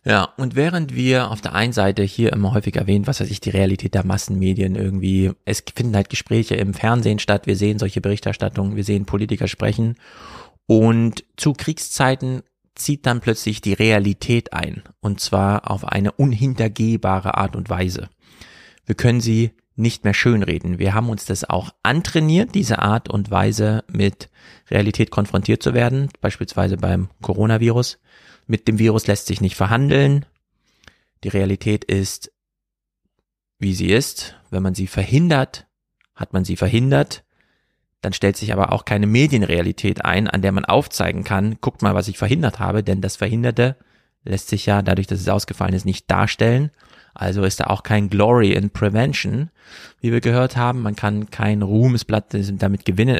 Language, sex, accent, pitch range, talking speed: German, male, German, 100-120 Hz, 165 wpm